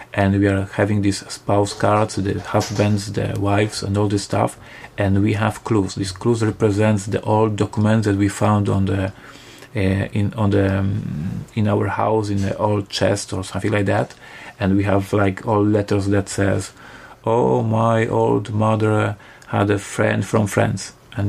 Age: 40-59